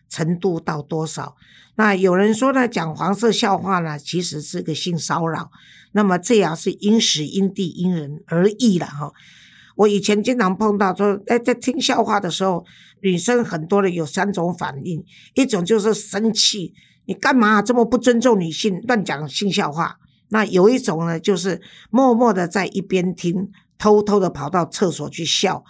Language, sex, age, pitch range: Chinese, female, 50-69, 170-215 Hz